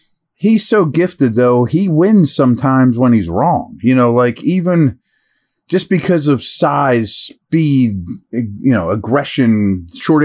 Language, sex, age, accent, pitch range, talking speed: English, male, 30-49, American, 115-150 Hz, 135 wpm